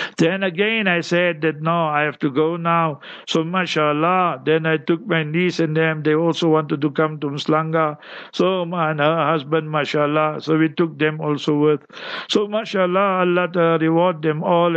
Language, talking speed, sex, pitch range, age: English, 180 wpm, male, 150-170 Hz, 60-79